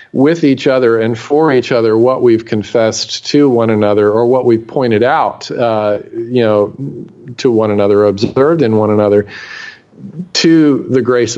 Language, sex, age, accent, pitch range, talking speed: English, male, 40-59, American, 110-150 Hz, 165 wpm